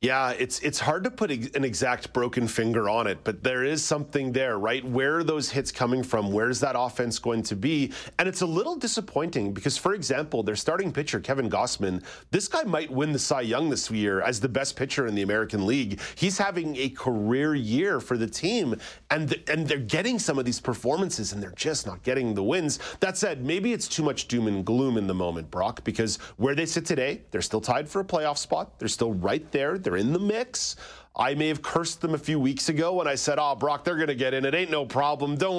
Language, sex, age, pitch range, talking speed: English, male, 30-49, 110-160 Hz, 235 wpm